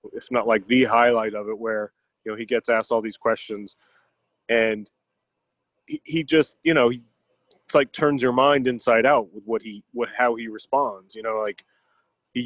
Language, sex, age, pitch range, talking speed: English, male, 30-49, 110-145 Hz, 195 wpm